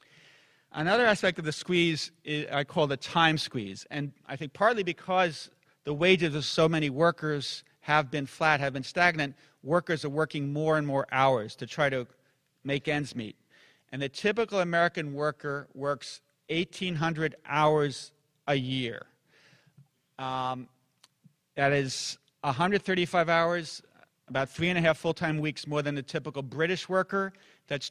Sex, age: male, 40-59